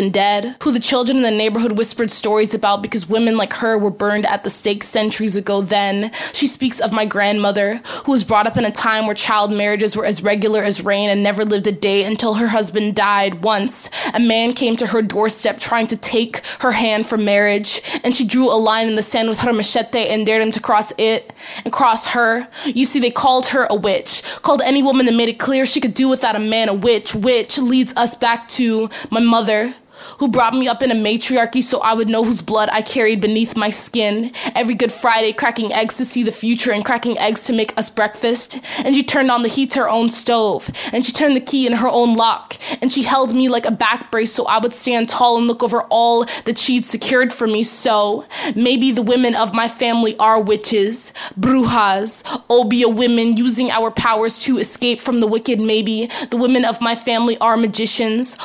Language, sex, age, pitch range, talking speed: English, female, 20-39, 220-250 Hz, 225 wpm